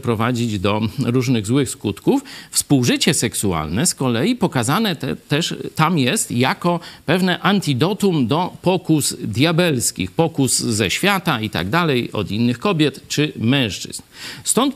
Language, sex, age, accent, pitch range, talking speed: Polish, male, 50-69, native, 125-185 Hz, 130 wpm